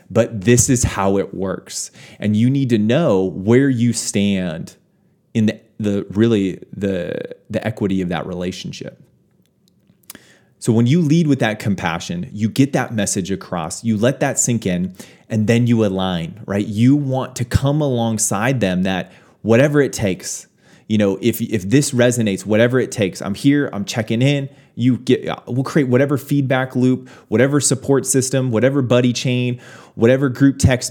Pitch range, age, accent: 100-130 Hz, 30-49, American